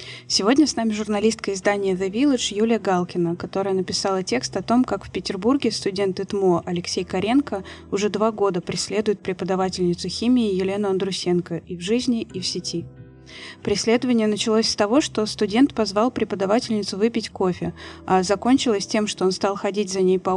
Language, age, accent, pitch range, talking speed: Russian, 20-39, native, 185-215 Hz, 160 wpm